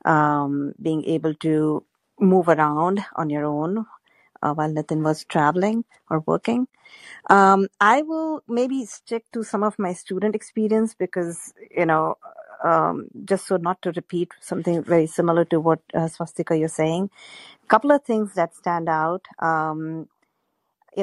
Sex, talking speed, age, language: female, 155 wpm, 50-69, English